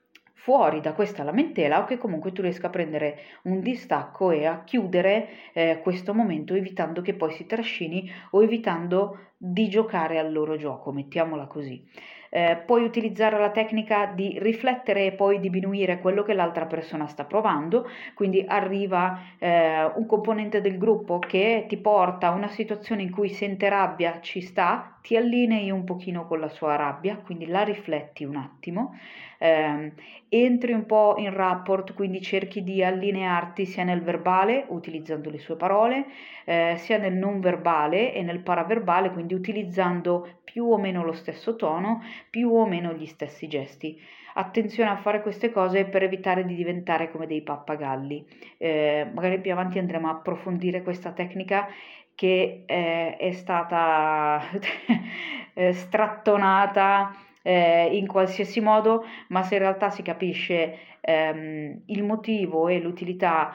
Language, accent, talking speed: Italian, native, 150 wpm